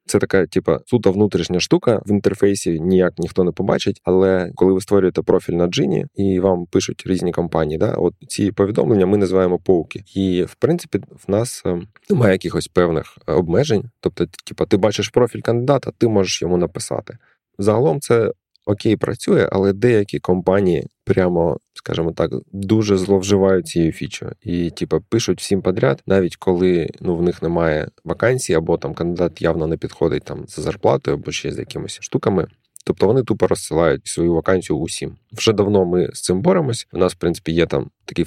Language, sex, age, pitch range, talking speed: Ukrainian, male, 20-39, 85-100 Hz, 175 wpm